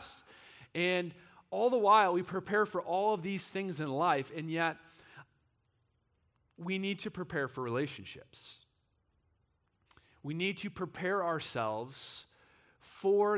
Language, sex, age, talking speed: English, male, 40-59, 120 wpm